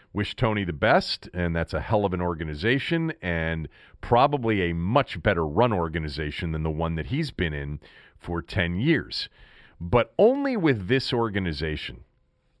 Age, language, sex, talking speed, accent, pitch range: 40-59, English, male, 155 wpm, American, 90-130 Hz